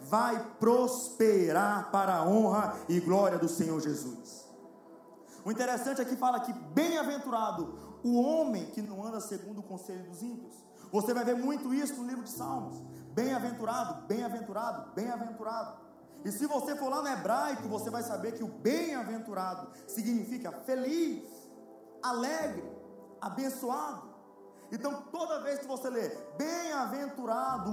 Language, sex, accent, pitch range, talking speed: Portuguese, male, Brazilian, 215-280 Hz, 135 wpm